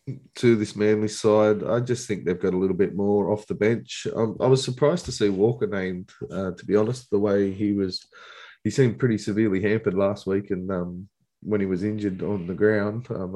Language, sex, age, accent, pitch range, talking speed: English, male, 20-39, Australian, 100-115 Hz, 220 wpm